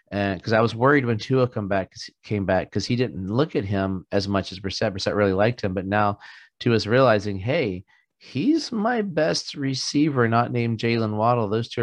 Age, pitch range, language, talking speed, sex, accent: 30-49, 100-120 Hz, English, 200 wpm, male, American